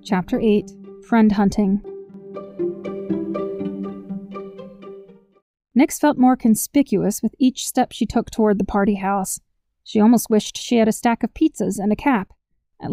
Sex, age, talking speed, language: female, 20-39, 140 wpm, English